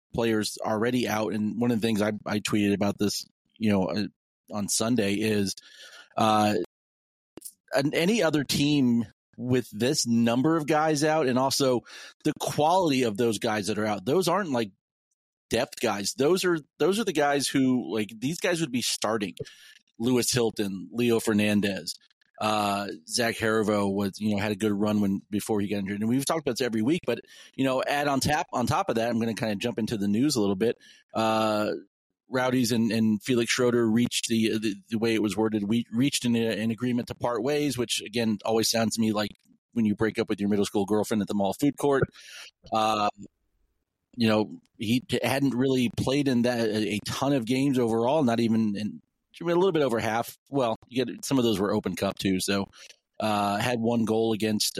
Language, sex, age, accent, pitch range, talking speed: English, male, 30-49, American, 105-125 Hz, 205 wpm